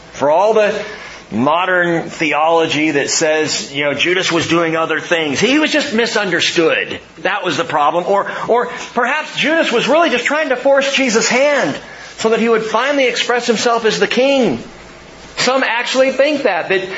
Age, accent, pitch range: 40-59, American, 160-235 Hz